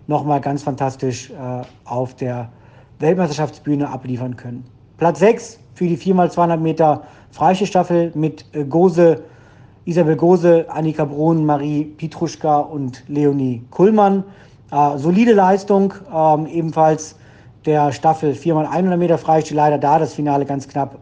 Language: German